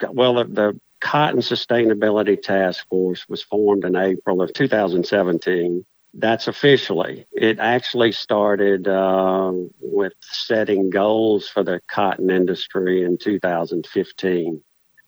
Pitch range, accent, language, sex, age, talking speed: 95-110 Hz, American, English, male, 50-69, 105 wpm